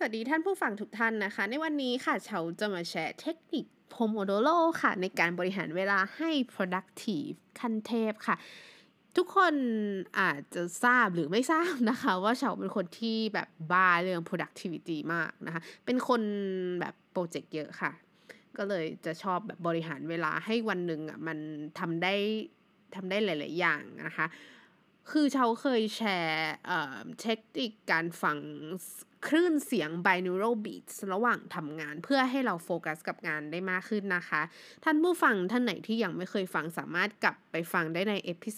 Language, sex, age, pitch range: Thai, female, 20-39, 175-240 Hz